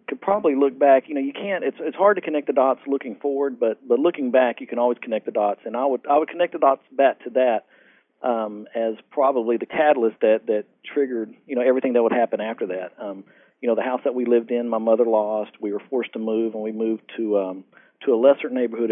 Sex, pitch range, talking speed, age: male, 110-130 Hz, 255 wpm, 40-59